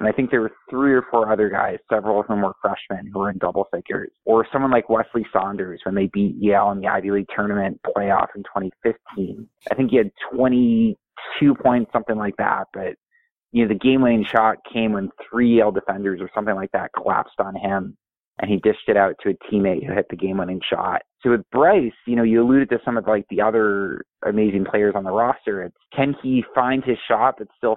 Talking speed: 225 wpm